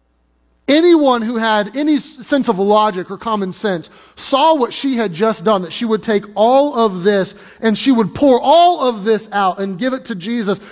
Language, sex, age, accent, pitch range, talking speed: English, male, 30-49, American, 185-245 Hz, 200 wpm